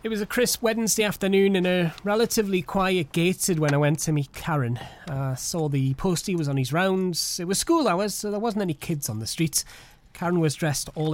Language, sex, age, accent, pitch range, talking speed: English, male, 30-49, British, 130-170 Hz, 220 wpm